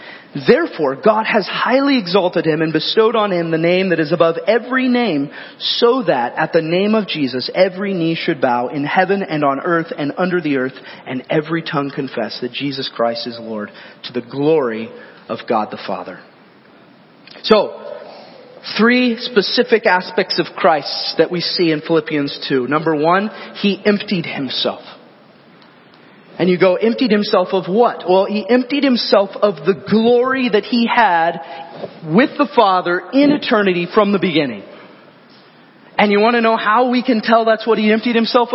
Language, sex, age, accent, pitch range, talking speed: English, male, 30-49, American, 155-220 Hz, 170 wpm